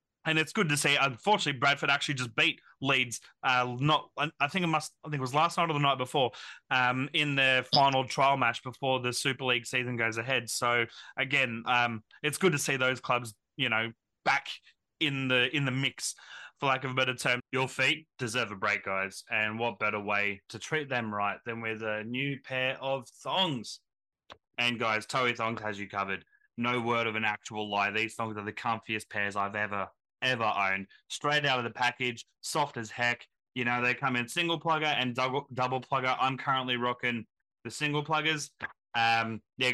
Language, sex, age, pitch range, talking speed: English, male, 20-39, 115-140 Hz, 200 wpm